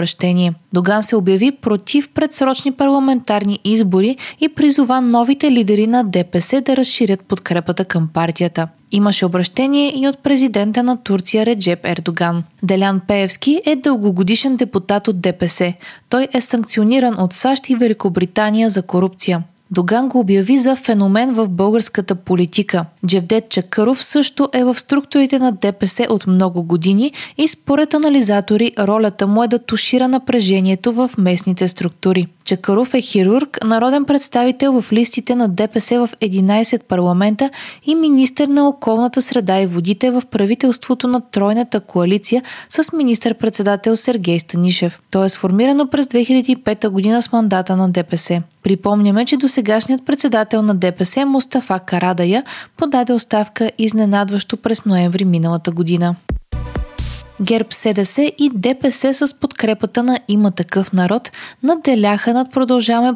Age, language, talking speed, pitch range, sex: 20-39, Bulgarian, 135 wpm, 190-255 Hz, female